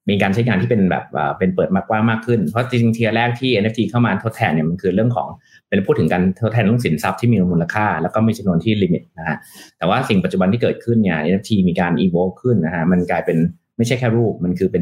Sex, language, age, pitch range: male, Thai, 30-49, 95-115 Hz